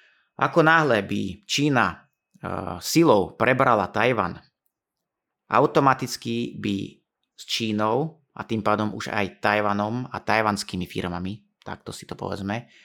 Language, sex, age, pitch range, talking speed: Slovak, male, 30-49, 105-130 Hz, 115 wpm